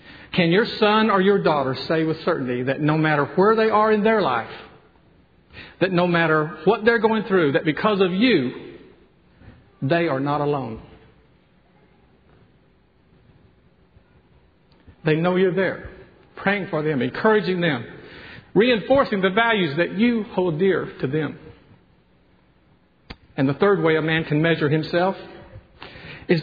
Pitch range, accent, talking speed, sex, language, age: 135-185 Hz, American, 140 wpm, male, English, 50-69